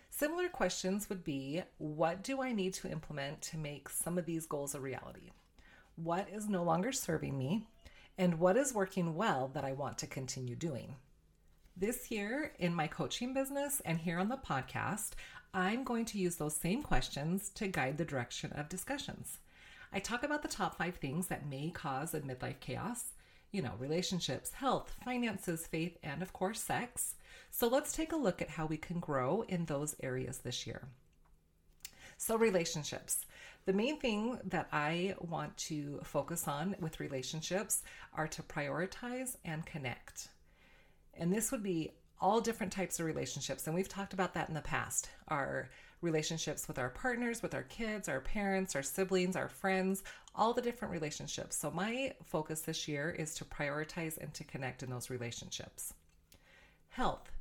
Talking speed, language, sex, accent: 170 wpm, English, female, American